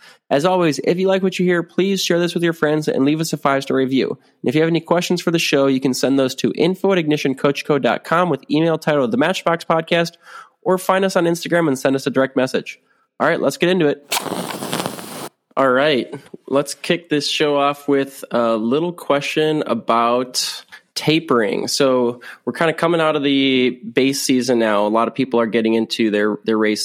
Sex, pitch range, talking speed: male, 115-155 Hz, 210 wpm